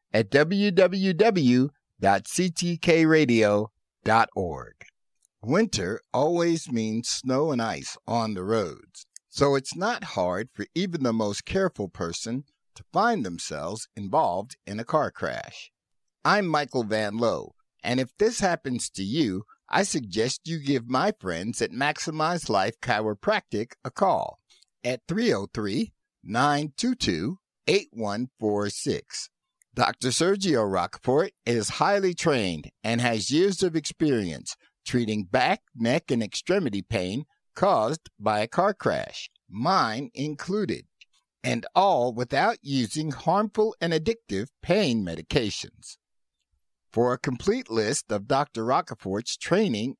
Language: English